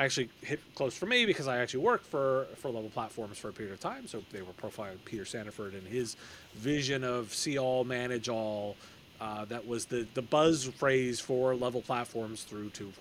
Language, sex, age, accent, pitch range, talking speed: English, male, 30-49, American, 115-140 Hz, 210 wpm